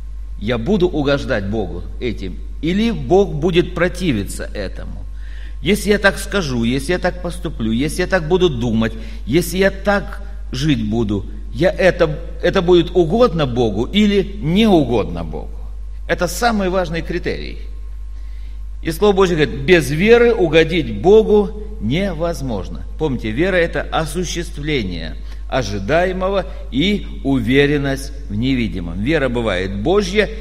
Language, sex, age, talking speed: Russian, male, 50-69, 120 wpm